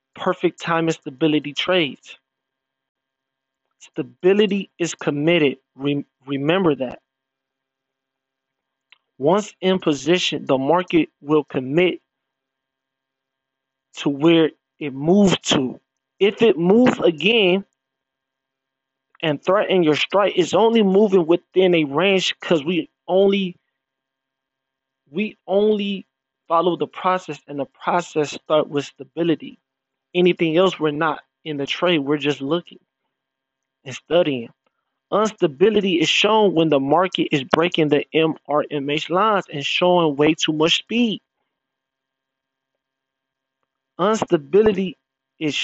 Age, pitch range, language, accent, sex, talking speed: 20-39, 135-175 Hz, English, American, male, 105 wpm